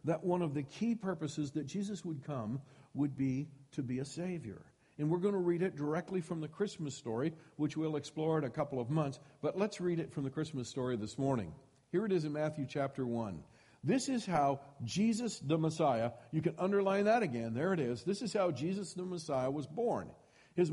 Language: English